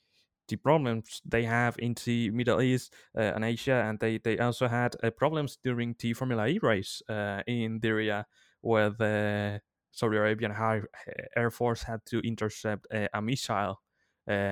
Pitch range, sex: 105-120 Hz, male